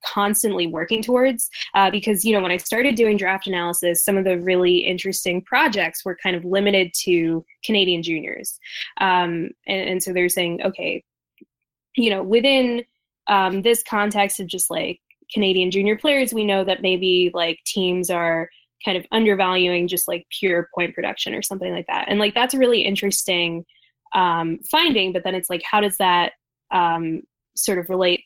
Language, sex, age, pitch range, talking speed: English, female, 10-29, 175-215 Hz, 175 wpm